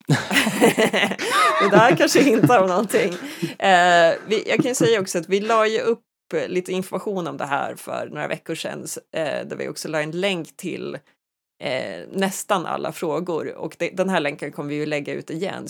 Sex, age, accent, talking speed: female, 30-49, native, 190 wpm